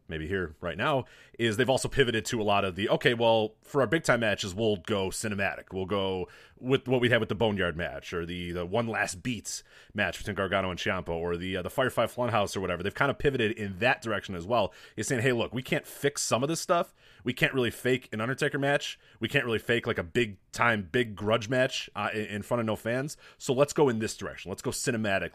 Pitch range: 95-130 Hz